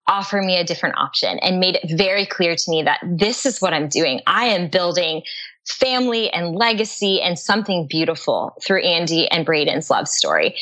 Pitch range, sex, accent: 175-225 Hz, female, American